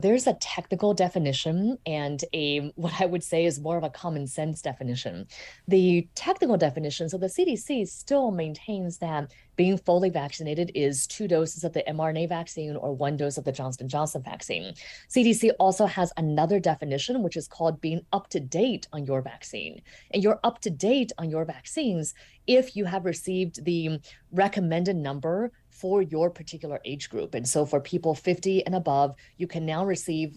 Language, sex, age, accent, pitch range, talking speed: English, female, 30-49, American, 150-195 Hz, 175 wpm